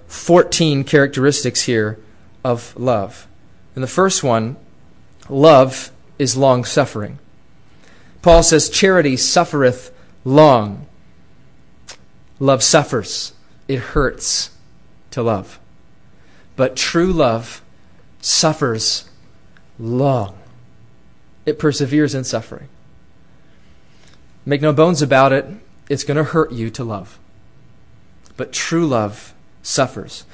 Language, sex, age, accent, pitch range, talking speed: English, male, 30-49, American, 110-145 Hz, 95 wpm